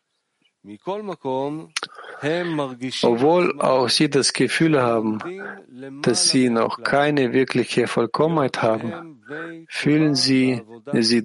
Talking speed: 85 wpm